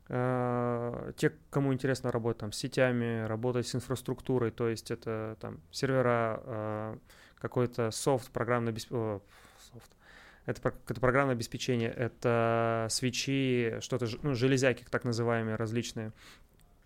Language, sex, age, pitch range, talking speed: Russian, male, 20-39, 120-135 Hz, 110 wpm